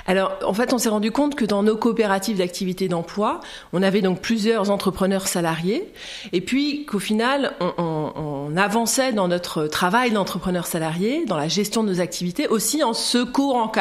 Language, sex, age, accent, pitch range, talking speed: French, female, 40-59, French, 185-245 Hz, 180 wpm